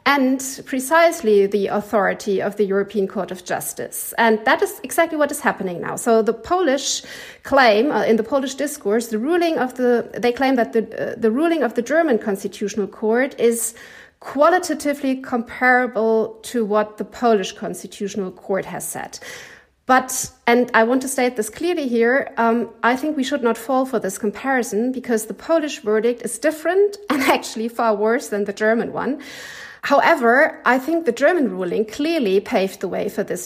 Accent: German